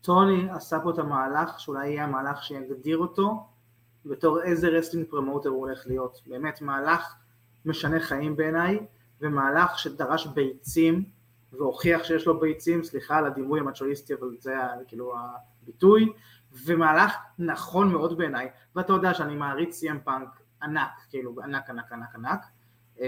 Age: 20-39